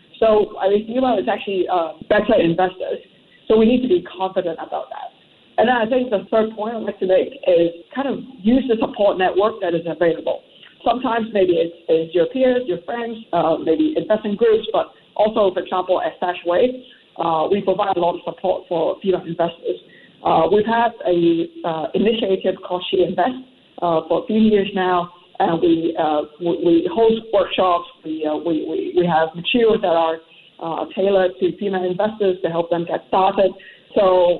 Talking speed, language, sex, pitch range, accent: 190 wpm, English, female, 175-215 Hz, American